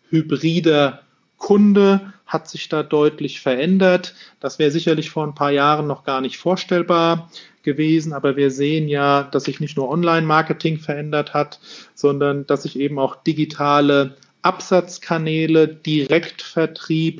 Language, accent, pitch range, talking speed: German, German, 145-175 Hz, 135 wpm